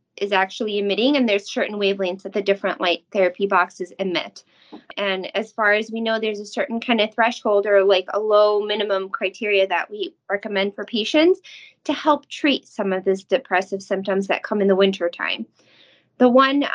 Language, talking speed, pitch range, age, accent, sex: English, 190 wpm, 190-230 Hz, 20-39, American, female